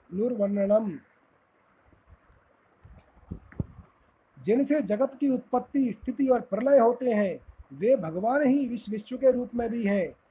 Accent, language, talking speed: native, Hindi, 115 wpm